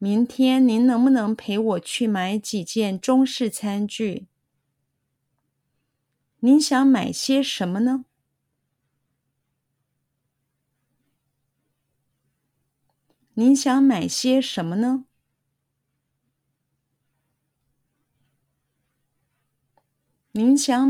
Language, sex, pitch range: Chinese, female, 135-230 Hz